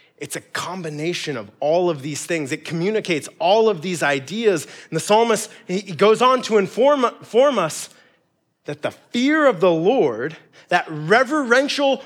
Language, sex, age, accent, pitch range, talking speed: English, male, 30-49, American, 150-210 Hz, 160 wpm